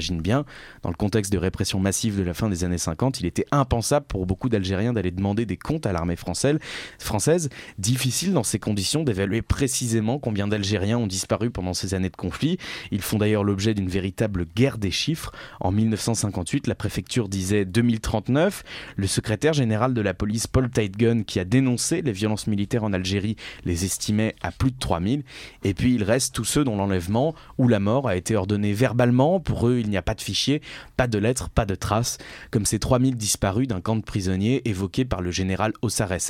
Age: 20-39